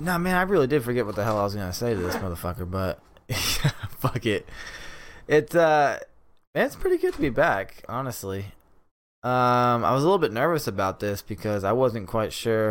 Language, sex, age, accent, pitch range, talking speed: English, male, 20-39, American, 110-165 Hz, 205 wpm